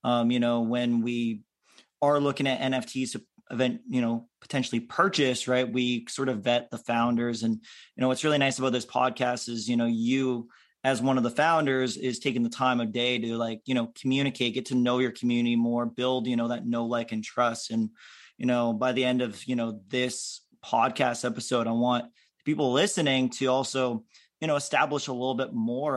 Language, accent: English, American